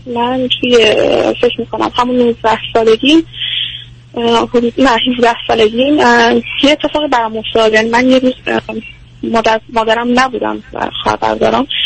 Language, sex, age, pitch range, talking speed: Persian, female, 30-49, 215-265 Hz, 105 wpm